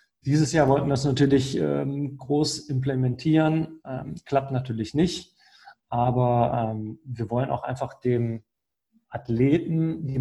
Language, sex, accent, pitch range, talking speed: German, male, German, 120-135 Hz, 130 wpm